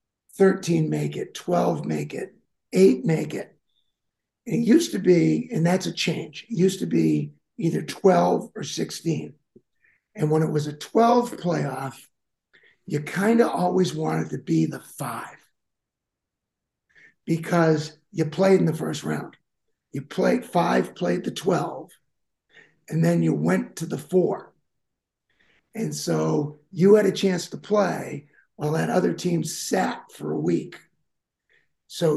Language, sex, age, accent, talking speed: English, male, 50-69, American, 145 wpm